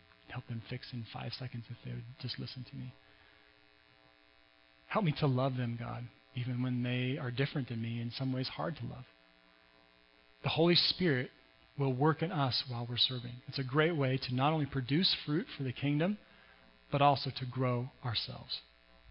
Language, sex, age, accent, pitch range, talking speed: English, male, 40-59, American, 115-170 Hz, 185 wpm